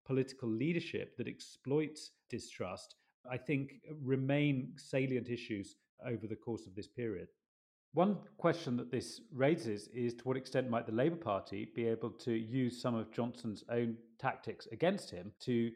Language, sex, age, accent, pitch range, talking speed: English, male, 30-49, British, 115-140 Hz, 155 wpm